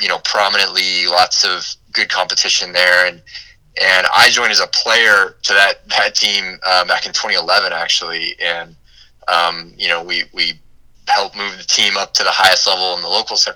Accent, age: American, 20-39